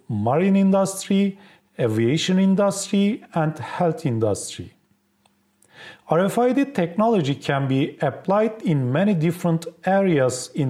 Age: 40-59